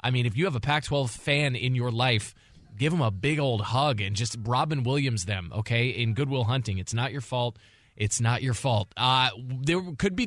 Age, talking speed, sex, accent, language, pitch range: 20-39, 220 wpm, male, American, English, 120-160 Hz